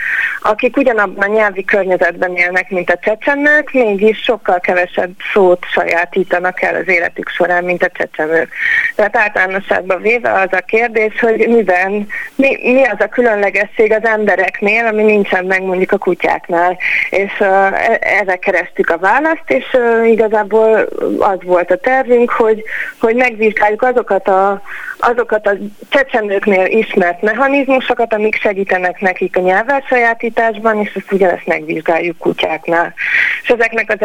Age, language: 30-49, Hungarian